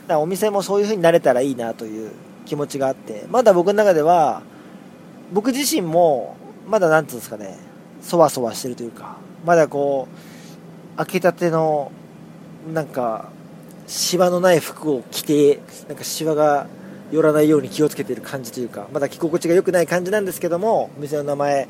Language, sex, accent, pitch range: Japanese, male, native, 135-190 Hz